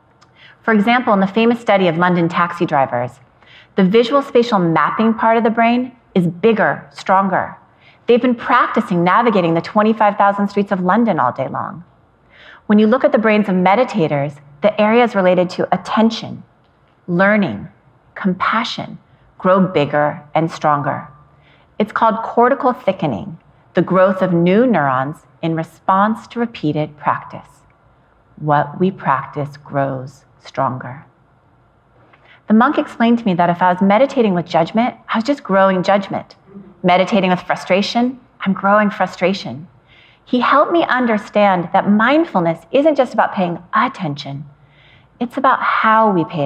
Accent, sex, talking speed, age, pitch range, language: American, female, 140 wpm, 40-59, 160-230 Hz, English